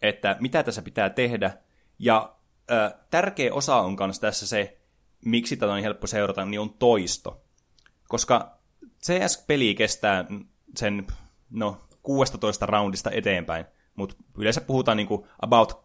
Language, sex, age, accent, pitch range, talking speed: Finnish, male, 20-39, native, 95-125 Hz, 130 wpm